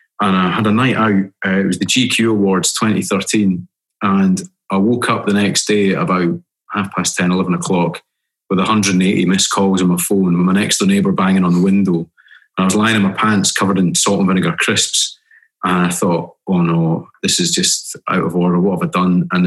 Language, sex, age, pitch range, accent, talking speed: English, male, 30-49, 90-105 Hz, British, 220 wpm